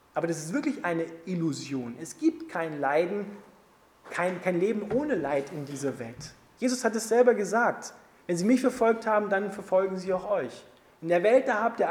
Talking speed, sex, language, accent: 195 wpm, male, German, German